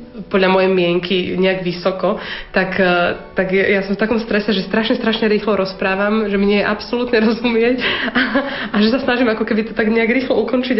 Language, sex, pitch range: Slovak, female, 190-215 Hz